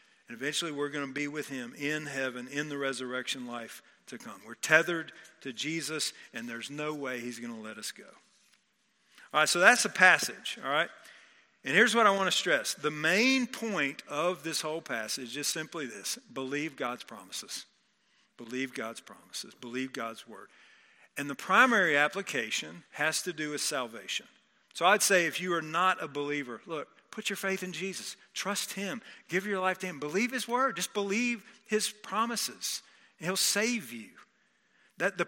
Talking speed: 180 wpm